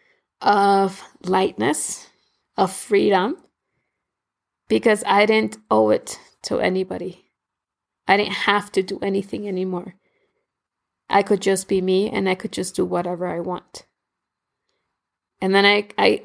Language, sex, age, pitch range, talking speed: English, female, 20-39, 190-220 Hz, 130 wpm